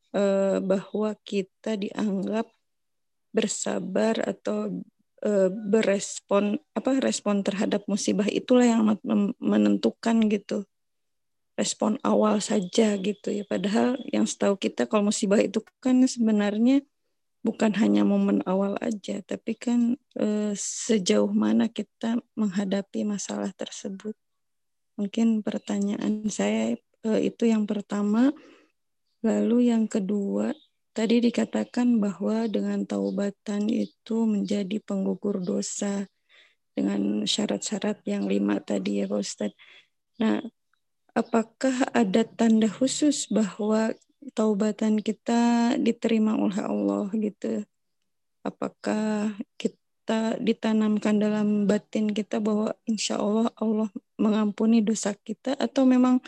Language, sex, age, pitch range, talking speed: Indonesian, female, 20-39, 205-230 Hz, 100 wpm